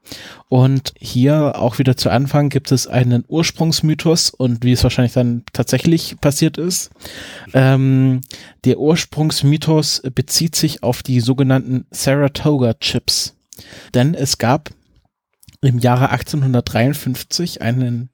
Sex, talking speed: male, 110 wpm